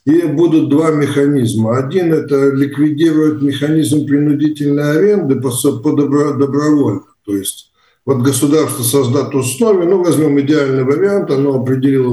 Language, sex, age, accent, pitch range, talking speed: Russian, male, 50-69, native, 125-155 Hz, 130 wpm